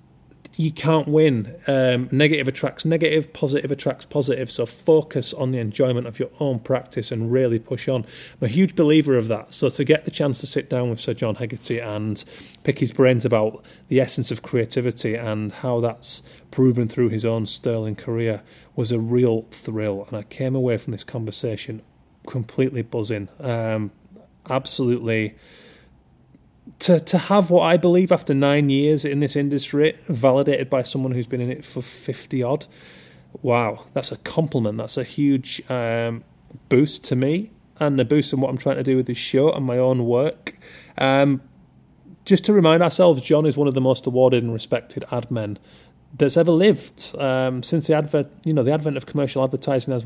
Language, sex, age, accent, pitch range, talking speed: English, male, 30-49, British, 115-140 Hz, 185 wpm